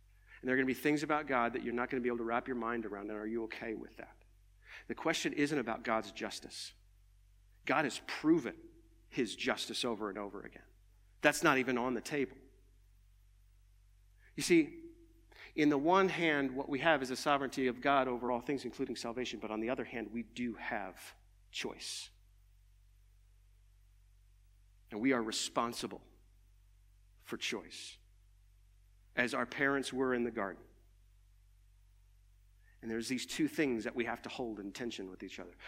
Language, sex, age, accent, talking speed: English, male, 50-69, American, 175 wpm